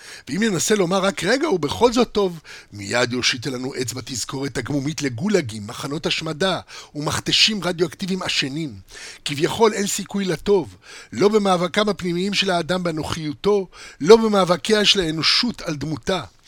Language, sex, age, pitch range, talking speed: Hebrew, male, 60-79, 130-195 Hz, 130 wpm